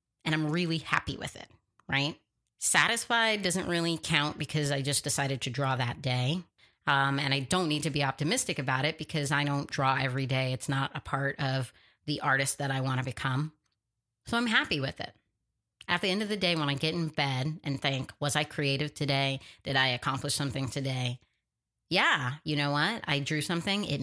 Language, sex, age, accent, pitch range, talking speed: English, female, 30-49, American, 135-160 Hz, 205 wpm